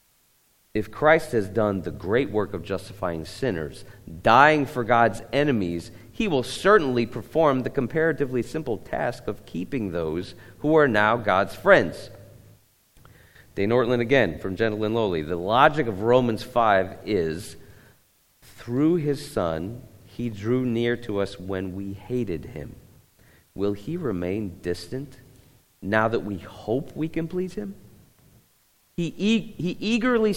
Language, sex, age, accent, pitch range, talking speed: English, male, 40-59, American, 100-140 Hz, 140 wpm